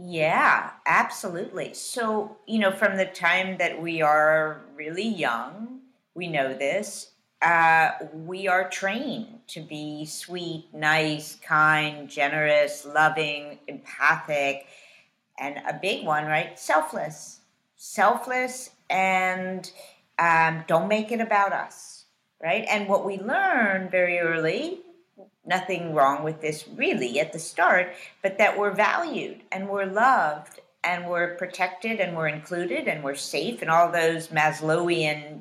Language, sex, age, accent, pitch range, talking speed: English, female, 50-69, American, 160-210 Hz, 130 wpm